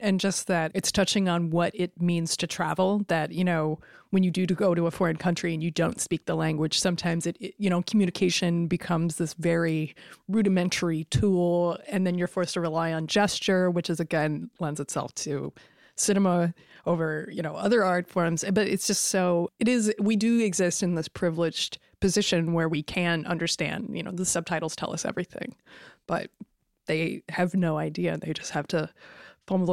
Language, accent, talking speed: English, American, 190 wpm